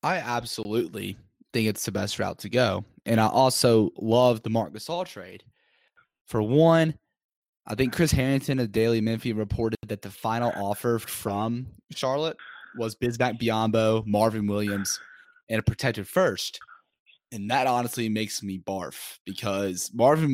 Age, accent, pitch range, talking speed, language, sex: 10-29, American, 105-130 Hz, 150 wpm, English, male